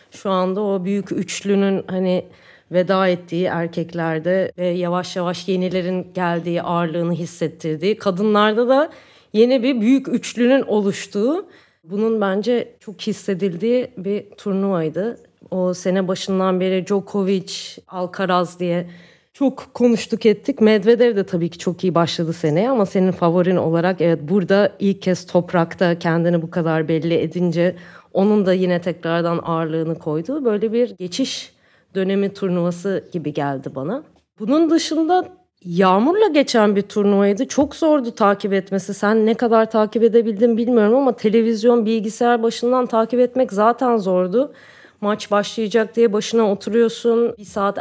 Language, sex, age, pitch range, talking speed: Turkish, female, 30-49, 180-235 Hz, 135 wpm